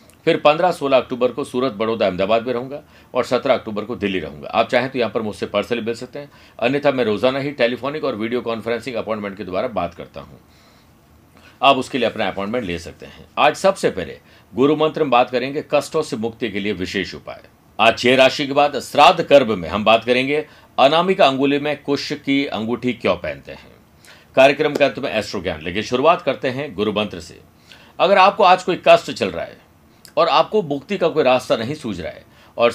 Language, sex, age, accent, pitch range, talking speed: Hindi, male, 50-69, native, 115-150 Hz, 205 wpm